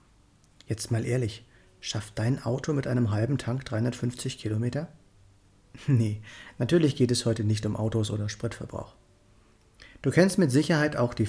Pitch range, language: 105-130 Hz, German